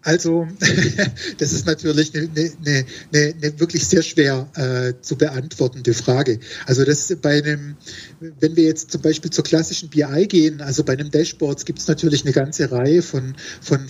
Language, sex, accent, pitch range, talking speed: German, male, German, 145-170 Hz, 160 wpm